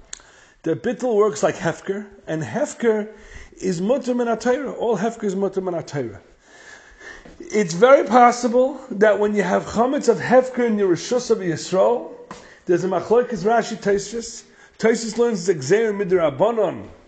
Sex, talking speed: male, 130 wpm